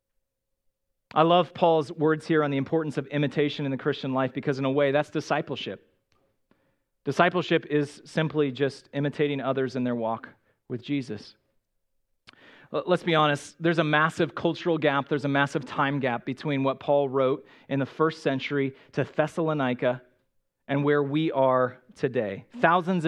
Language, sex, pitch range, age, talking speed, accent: English, male, 140-185 Hz, 40-59, 155 wpm, American